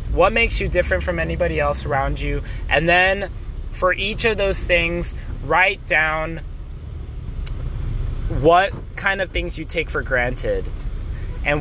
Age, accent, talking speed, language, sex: 20-39, American, 140 wpm, English, male